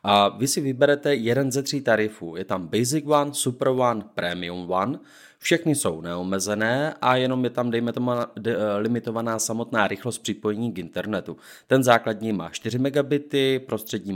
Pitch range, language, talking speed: 105-140 Hz, Czech, 155 wpm